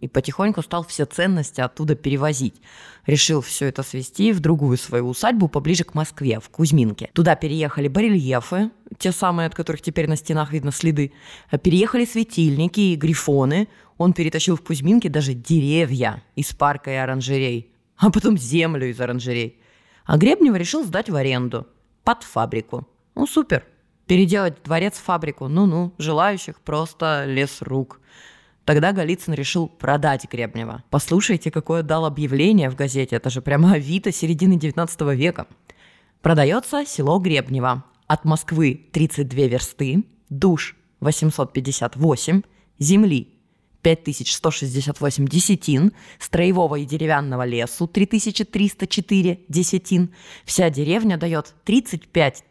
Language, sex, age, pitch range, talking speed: Russian, female, 20-39, 140-180 Hz, 125 wpm